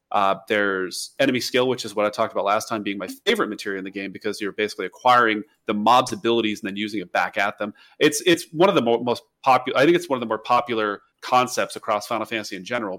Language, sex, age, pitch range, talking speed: English, male, 30-49, 110-145 Hz, 255 wpm